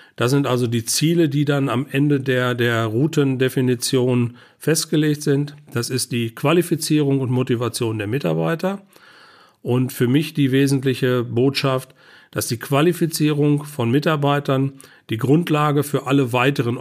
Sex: male